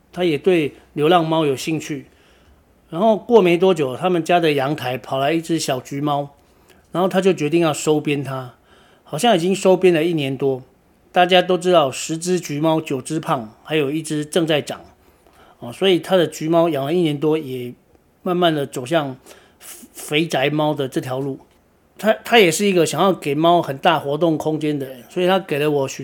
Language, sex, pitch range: Chinese, male, 145-180 Hz